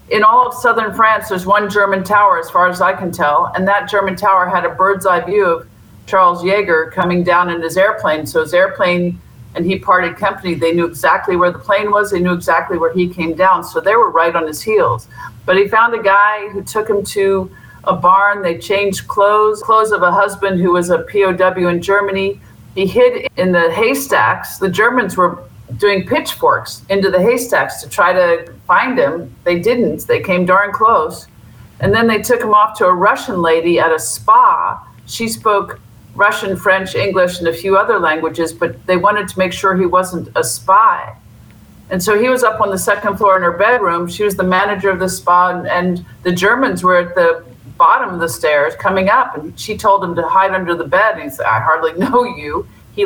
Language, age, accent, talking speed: English, 50-69, American, 215 wpm